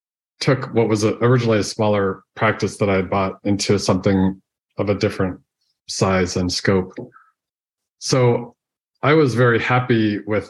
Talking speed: 145 wpm